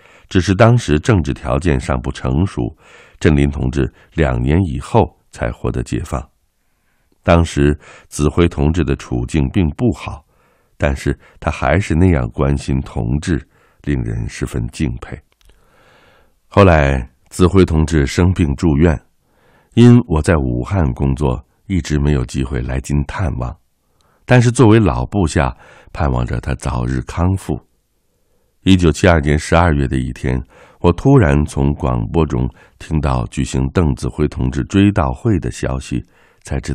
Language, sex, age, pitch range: Chinese, male, 60-79, 65-85 Hz